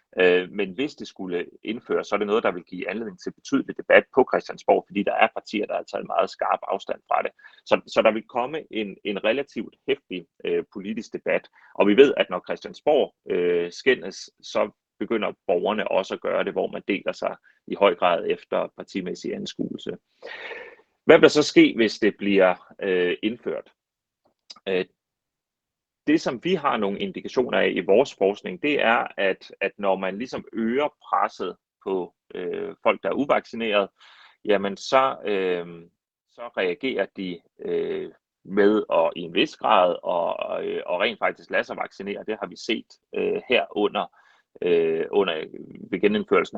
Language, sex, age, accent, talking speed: Danish, male, 30-49, native, 175 wpm